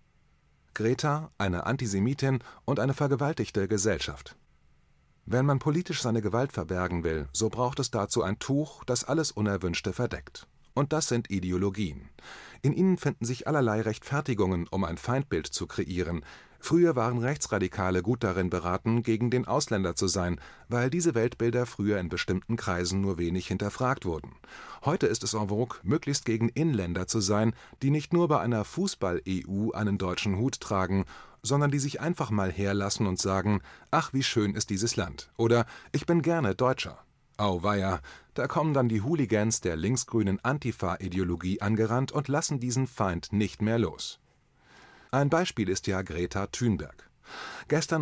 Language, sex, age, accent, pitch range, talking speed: German, male, 30-49, German, 95-130 Hz, 155 wpm